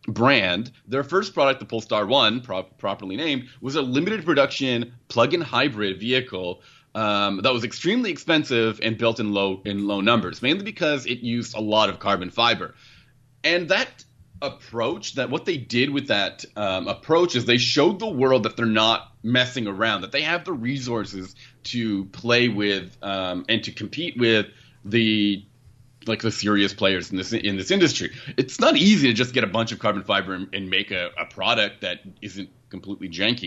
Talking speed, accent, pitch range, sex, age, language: 185 wpm, American, 100-125 Hz, male, 30-49, English